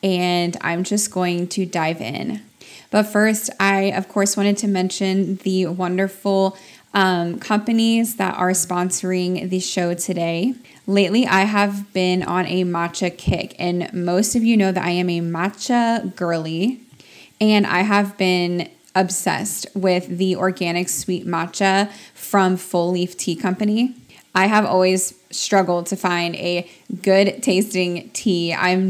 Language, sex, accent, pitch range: English, female, American, 180-205 Hz